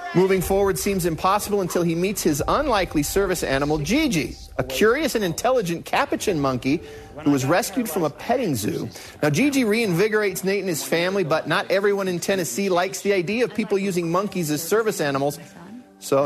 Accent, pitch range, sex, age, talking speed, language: American, 150-205 Hz, male, 40-59, 175 wpm, English